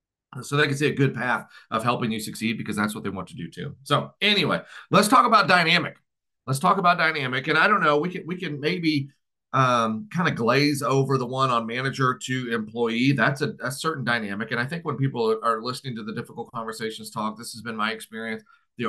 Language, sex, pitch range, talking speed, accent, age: English, male, 110-135 Hz, 230 wpm, American, 40-59